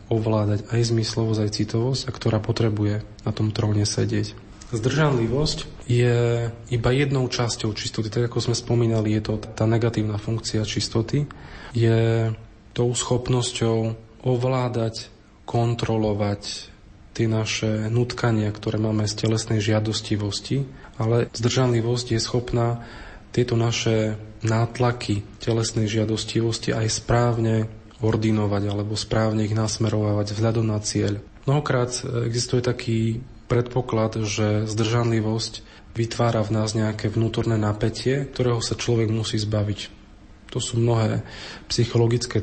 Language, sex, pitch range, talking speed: Slovak, male, 105-115 Hz, 115 wpm